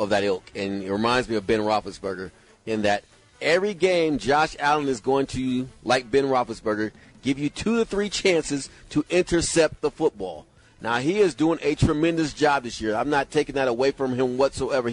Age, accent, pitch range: 30-49, American, 135-205 Hz